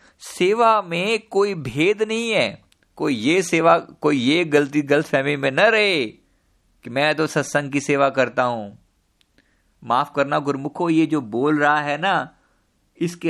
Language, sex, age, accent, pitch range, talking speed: Hindi, male, 50-69, native, 130-165 Hz, 155 wpm